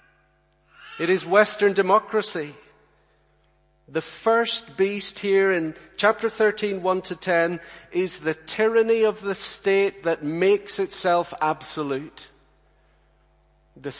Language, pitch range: English, 155-195 Hz